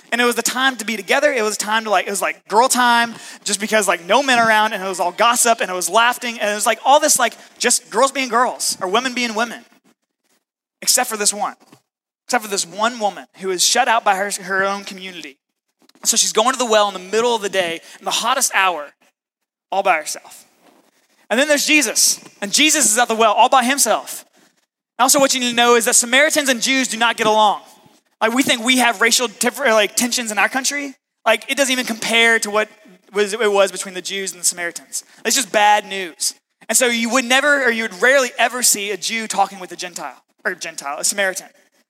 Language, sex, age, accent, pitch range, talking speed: English, male, 20-39, American, 210-260 Hz, 240 wpm